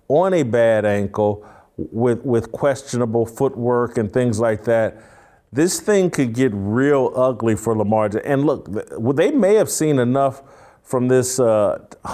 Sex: male